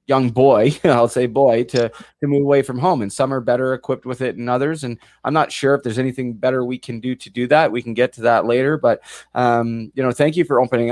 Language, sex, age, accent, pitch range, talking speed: English, male, 20-39, American, 120-145 Hz, 265 wpm